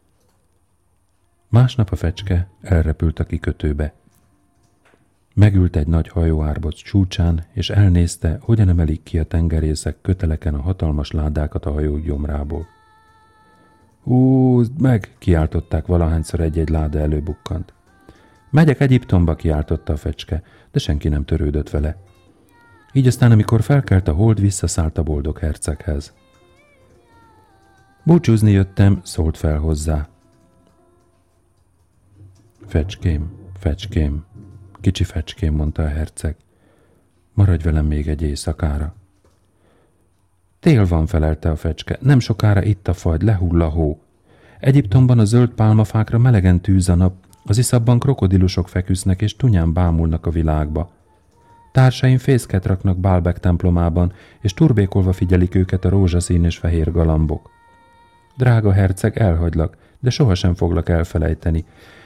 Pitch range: 80-105 Hz